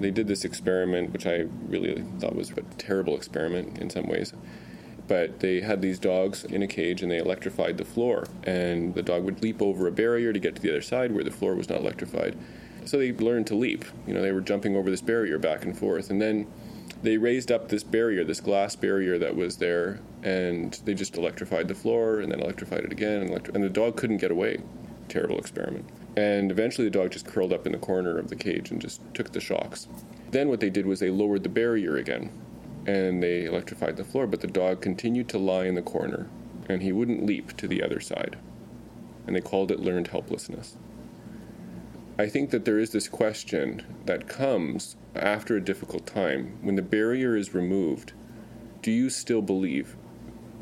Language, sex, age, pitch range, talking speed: English, male, 30-49, 95-115 Hz, 205 wpm